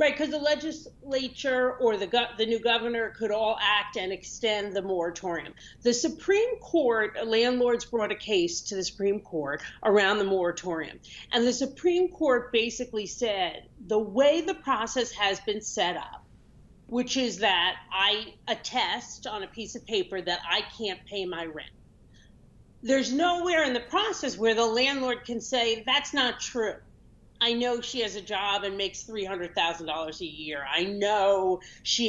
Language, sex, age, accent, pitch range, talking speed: English, female, 40-59, American, 195-260 Hz, 170 wpm